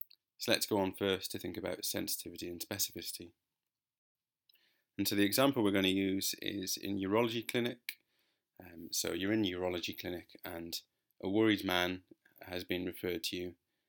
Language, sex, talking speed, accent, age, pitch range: English, male, 165 wpm, British, 30-49, 90-110 Hz